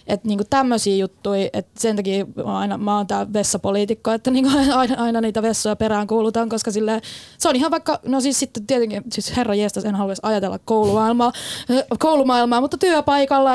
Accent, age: native, 20-39